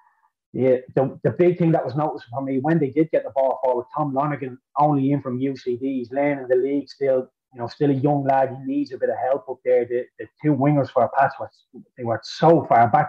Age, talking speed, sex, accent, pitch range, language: 30-49, 245 wpm, male, Irish, 125-150 Hz, English